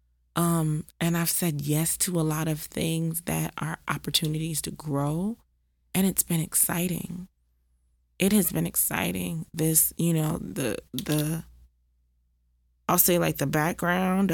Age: 20-39